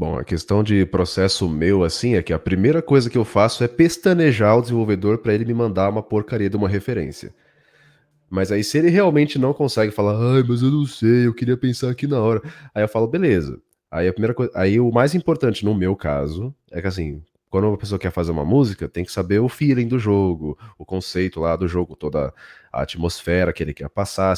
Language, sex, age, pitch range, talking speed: Portuguese, male, 20-39, 90-120 Hz, 225 wpm